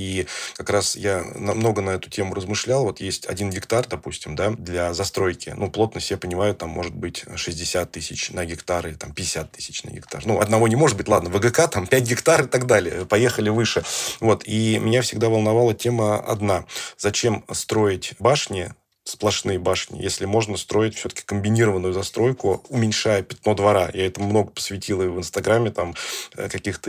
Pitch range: 95-110 Hz